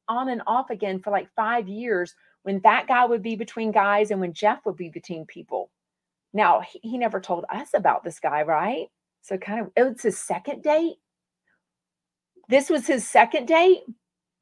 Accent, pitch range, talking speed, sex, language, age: American, 195-250 Hz, 190 wpm, female, English, 40-59